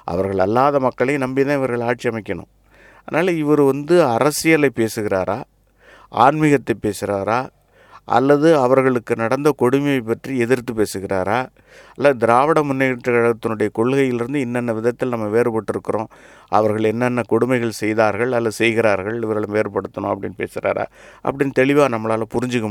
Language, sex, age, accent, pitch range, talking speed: English, male, 50-69, Indian, 105-130 Hz, 125 wpm